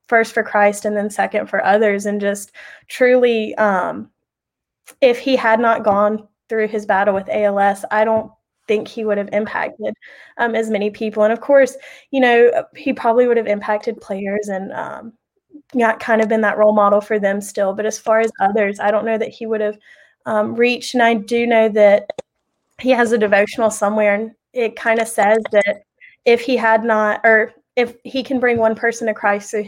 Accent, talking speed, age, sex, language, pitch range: American, 200 wpm, 20-39, female, English, 205-230 Hz